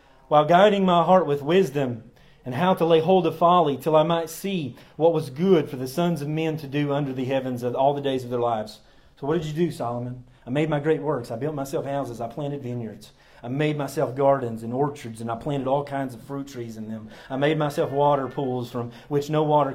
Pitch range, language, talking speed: 135-180 Hz, English, 240 wpm